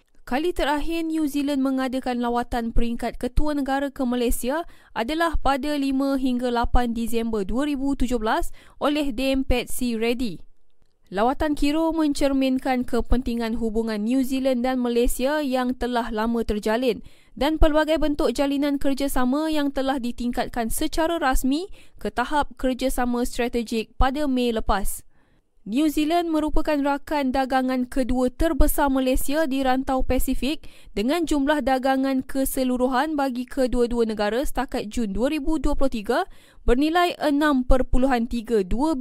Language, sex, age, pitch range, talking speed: Malay, female, 20-39, 240-285 Hz, 115 wpm